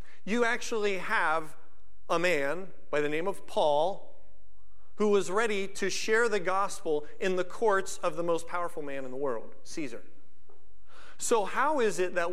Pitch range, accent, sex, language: 145-190 Hz, American, male, English